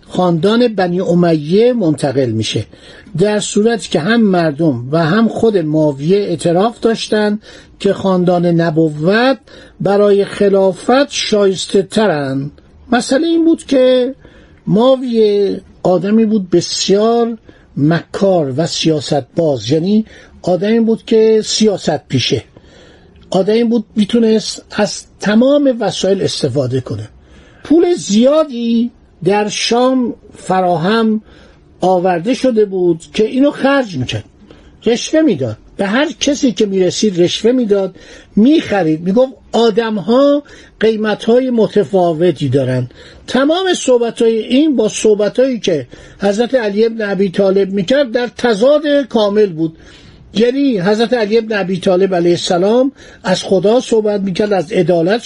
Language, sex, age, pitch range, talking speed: Persian, male, 50-69, 180-235 Hz, 120 wpm